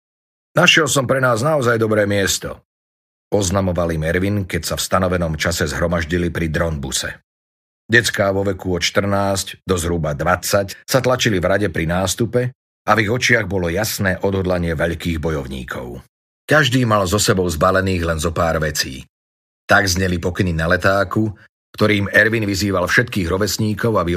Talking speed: 150 wpm